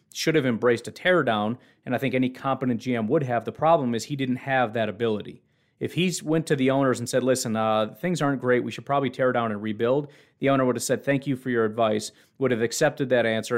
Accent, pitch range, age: American, 110-135 Hz, 40-59